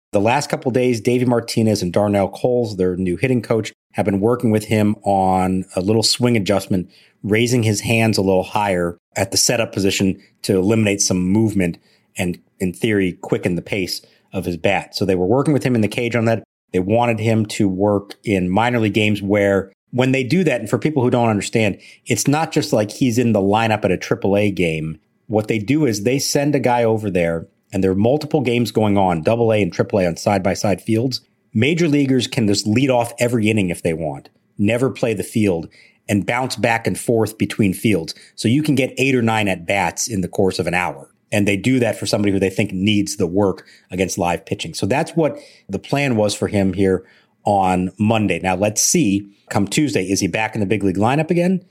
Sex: male